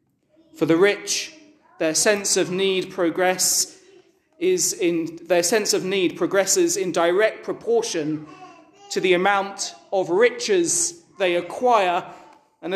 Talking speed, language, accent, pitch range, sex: 120 wpm, English, British, 185-250 Hz, male